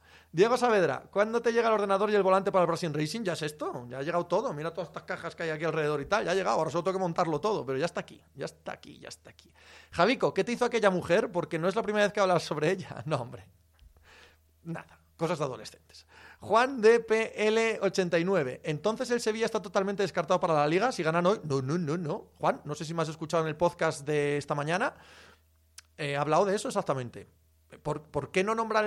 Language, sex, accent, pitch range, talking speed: Spanish, male, Spanish, 145-195 Hz, 240 wpm